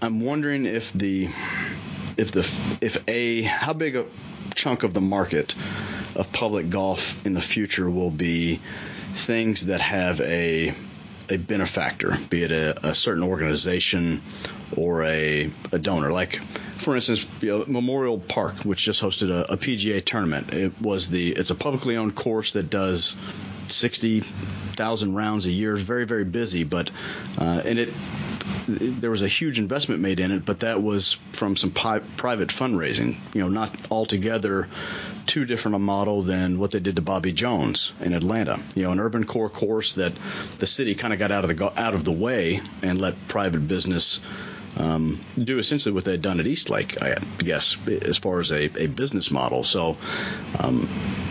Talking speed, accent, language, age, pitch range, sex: 180 wpm, American, English, 30-49, 95-115 Hz, male